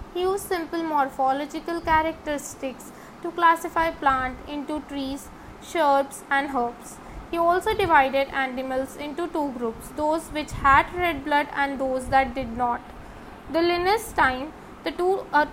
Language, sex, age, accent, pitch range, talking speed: English, female, 20-39, Indian, 270-335 Hz, 140 wpm